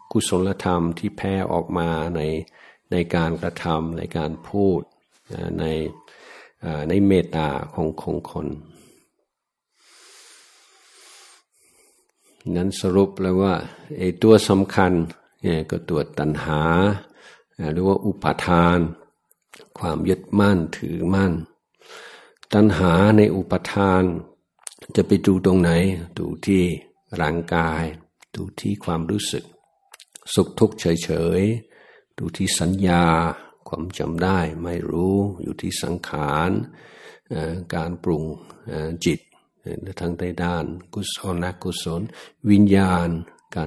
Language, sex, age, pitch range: Thai, male, 60-79, 85-95 Hz